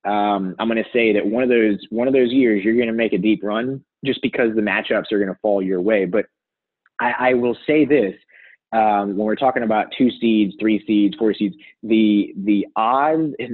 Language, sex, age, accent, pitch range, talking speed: English, male, 20-39, American, 100-125 Hz, 220 wpm